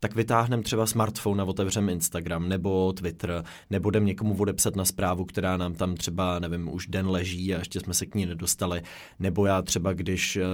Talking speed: 190 wpm